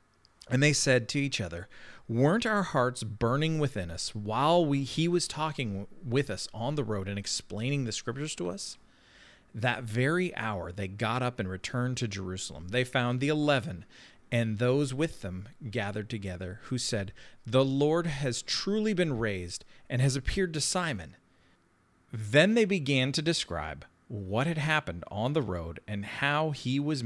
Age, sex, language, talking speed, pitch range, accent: 40-59, male, English, 170 wpm, 100-140 Hz, American